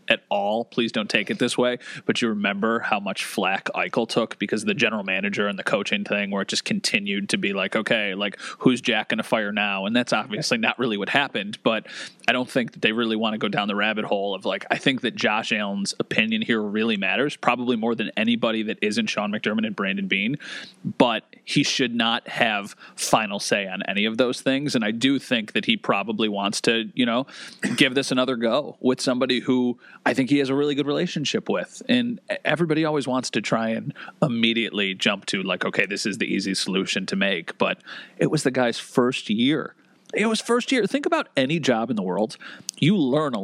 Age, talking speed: 30-49, 225 wpm